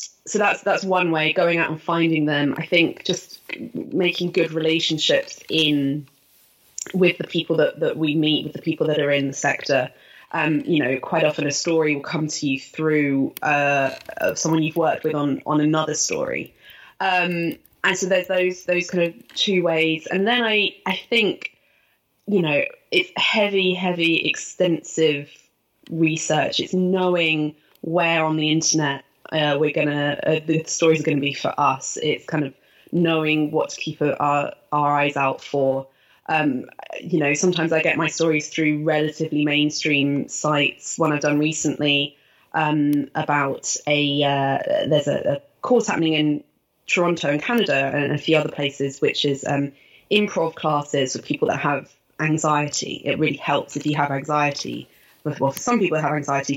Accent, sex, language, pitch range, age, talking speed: British, female, English, 145-170 Hz, 20-39, 175 wpm